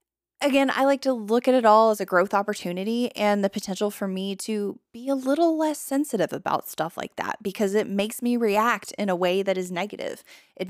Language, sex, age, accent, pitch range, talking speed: English, female, 20-39, American, 185-240 Hz, 220 wpm